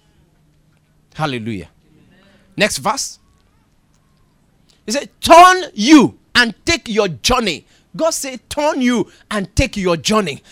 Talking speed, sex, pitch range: 110 wpm, male, 180-275 Hz